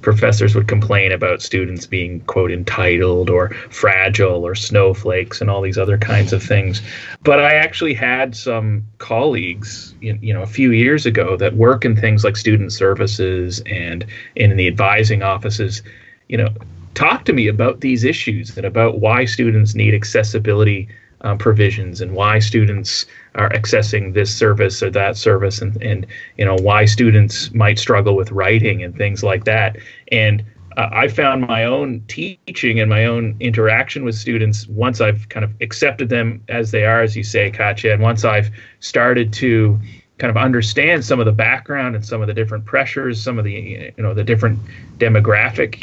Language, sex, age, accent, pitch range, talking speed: English, male, 30-49, American, 105-115 Hz, 175 wpm